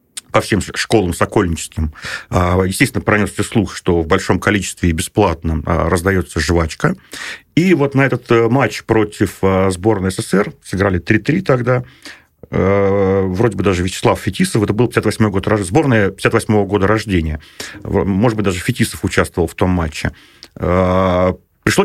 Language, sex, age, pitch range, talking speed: Russian, male, 40-59, 90-110 Hz, 135 wpm